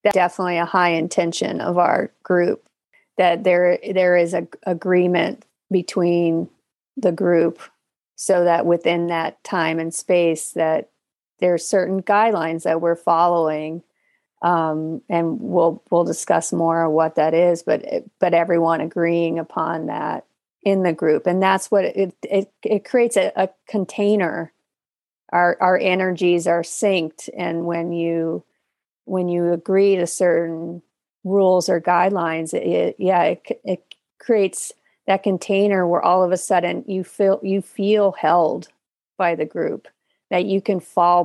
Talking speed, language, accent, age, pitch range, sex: 145 wpm, English, American, 40-59, 165-195 Hz, female